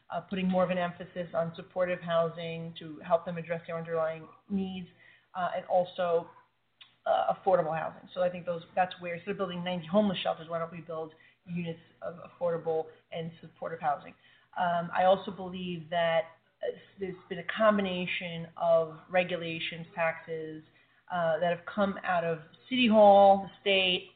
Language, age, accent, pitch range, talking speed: English, 30-49, American, 165-195 Hz, 165 wpm